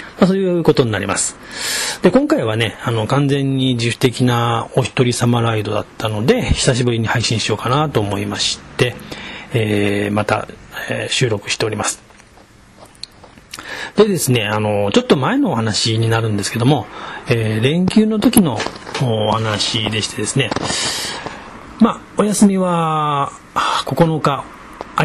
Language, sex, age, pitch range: Japanese, male, 40-59, 110-155 Hz